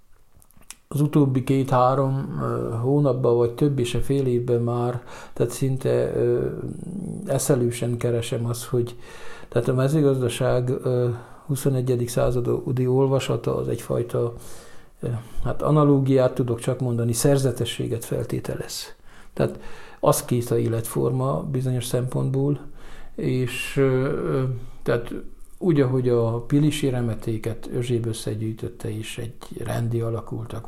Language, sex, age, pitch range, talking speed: Hungarian, male, 50-69, 115-130 Hz, 110 wpm